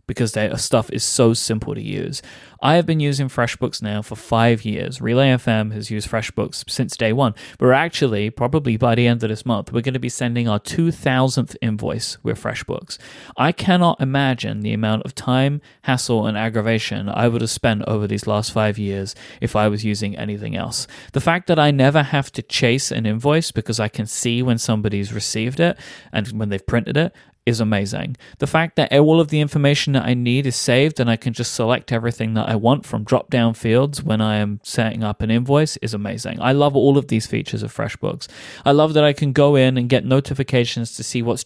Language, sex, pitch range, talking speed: English, male, 110-140 Hz, 215 wpm